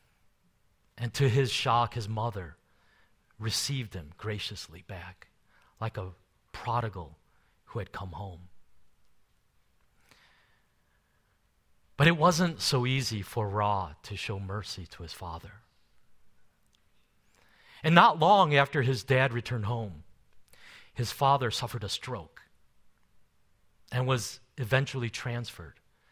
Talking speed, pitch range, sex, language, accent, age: 110 wpm, 100-135 Hz, male, English, American, 40-59